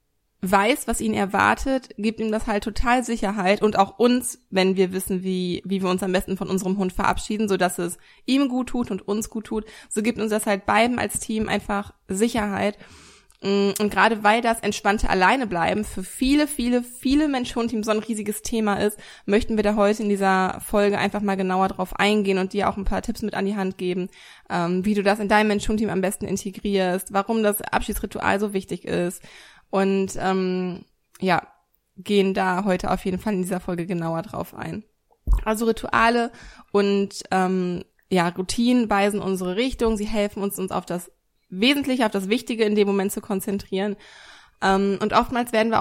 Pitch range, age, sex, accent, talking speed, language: 190-220 Hz, 20-39, female, German, 190 wpm, German